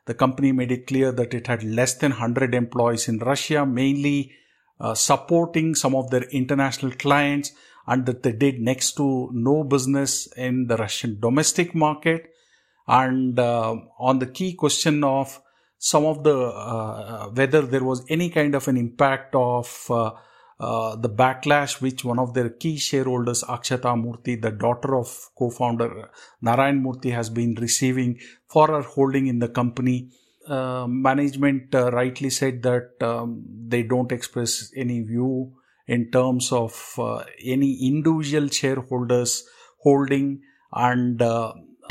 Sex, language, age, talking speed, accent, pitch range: male, English, 50-69, 150 wpm, Indian, 120-140 Hz